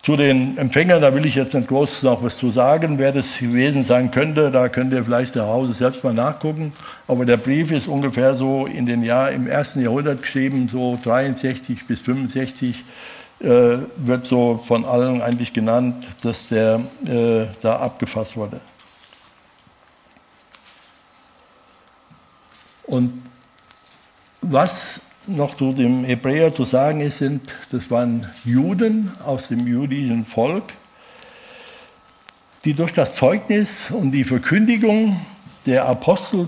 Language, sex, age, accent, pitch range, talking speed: German, male, 60-79, German, 125-155 Hz, 135 wpm